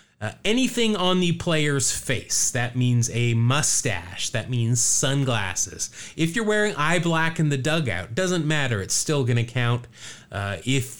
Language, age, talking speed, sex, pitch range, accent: English, 30-49, 165 wpm, male, 115-160 Hz, American